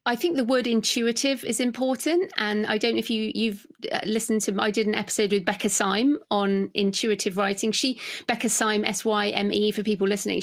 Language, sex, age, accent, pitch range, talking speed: English, female, 30-49, British, 195-225 Hz, 190 wpm